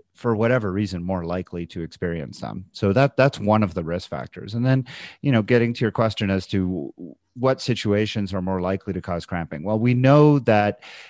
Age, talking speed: 30-49, 205 wpm